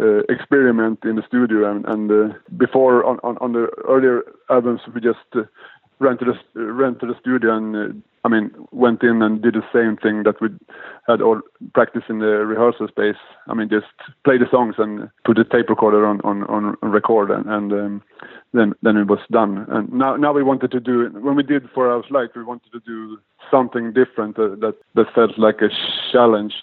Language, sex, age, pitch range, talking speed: English, male, 20-39, 110-125 Hz, 210 wpm